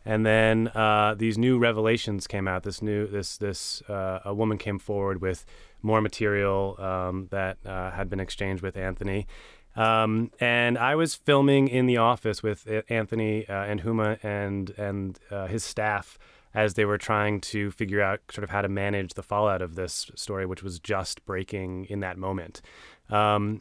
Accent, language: American, English